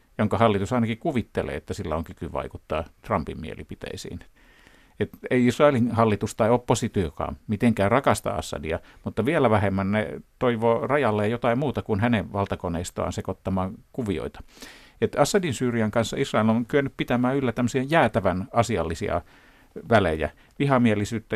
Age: 50-69